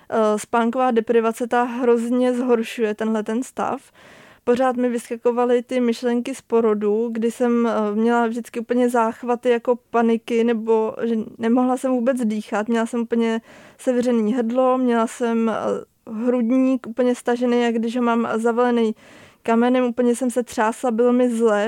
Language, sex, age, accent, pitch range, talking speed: Czech, female, 20-39, native, 230-245 Hz, 140 wpm